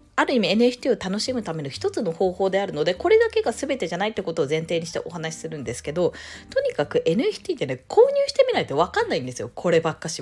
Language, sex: Japanese, female